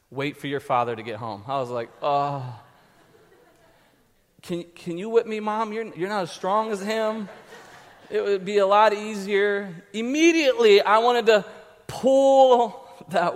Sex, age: male, 30-49